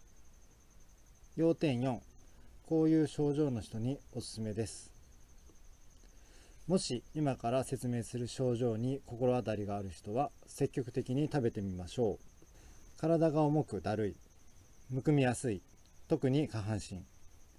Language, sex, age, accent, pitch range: Japanese, male, 40-59, native, 95-140 Hz